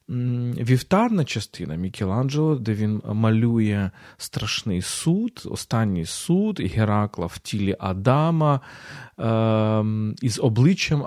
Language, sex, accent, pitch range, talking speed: Ukrainian, male, native, 100-130 Hz, 90 wpm